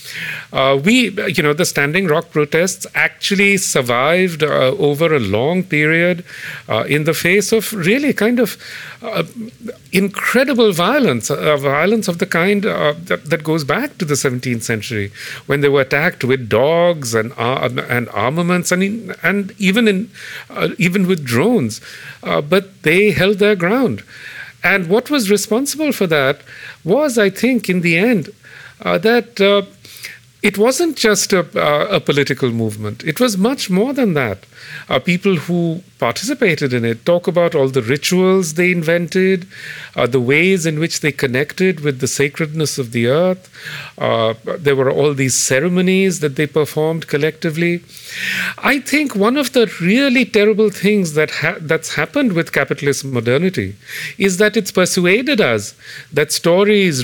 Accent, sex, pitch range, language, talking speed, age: Indian, male, 145-205 Hz, English, 160 wpm, 50-69